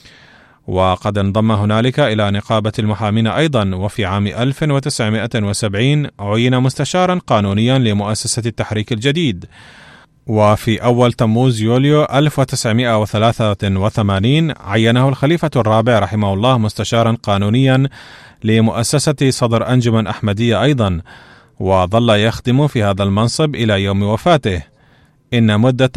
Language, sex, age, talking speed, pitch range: Arabic, male, 30-49, 100 wpm, 105-130 Hz